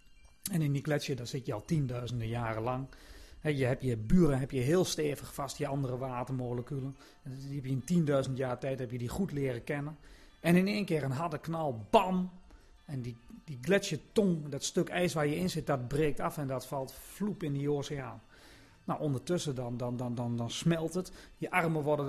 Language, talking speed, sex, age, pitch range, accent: Dutch, 210 wpm, male, 40-59, 130-160 Hz, Dutch